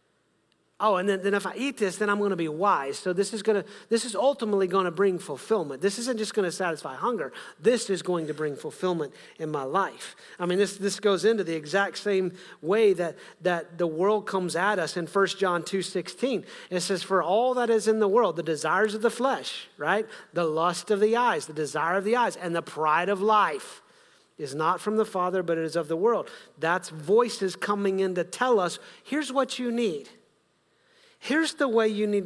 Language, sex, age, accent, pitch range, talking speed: English, male, 40-59, American, 185-230 Hz, 225 wpm